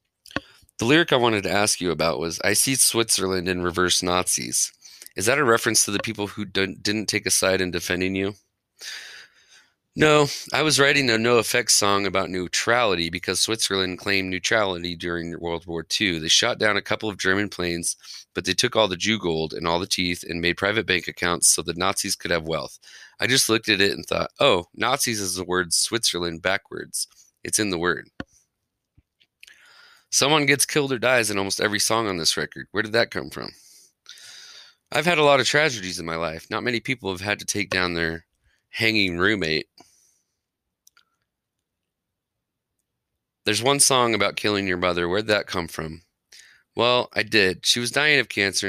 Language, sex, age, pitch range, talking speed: English, male, 30-49, 90-110 Hz, 190 wpm